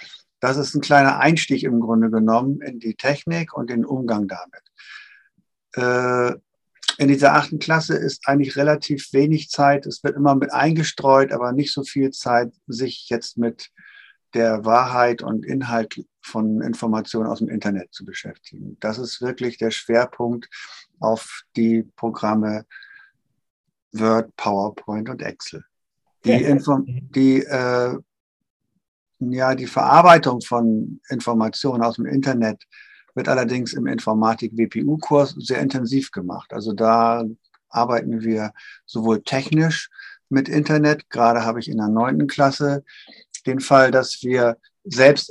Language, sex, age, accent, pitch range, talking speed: German, male, 50-69, German, 115-145 Hz, 135 wpm